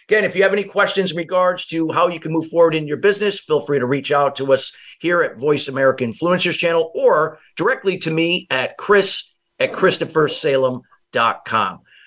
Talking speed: 190 wpm